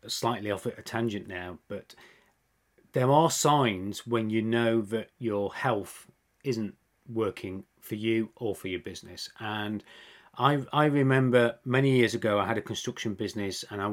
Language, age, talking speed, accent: English, 30-49, 160 wpm, British